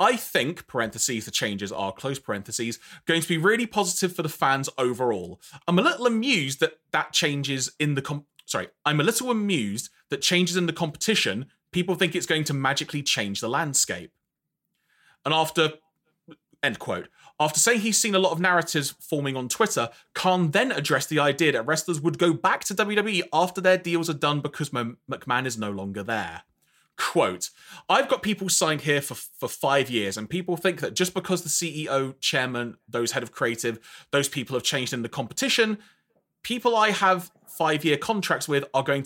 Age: 30-49